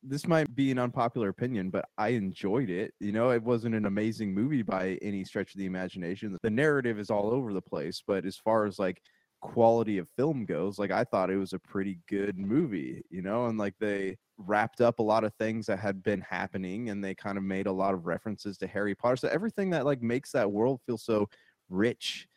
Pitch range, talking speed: 95-115 Hz, 230 wpm